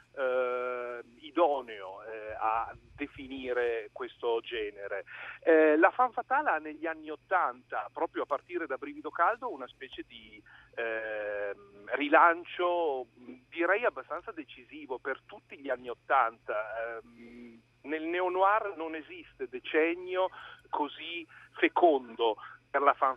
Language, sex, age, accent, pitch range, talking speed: Italian, male, 40-59, native, 120-185 Hz, 120 wpm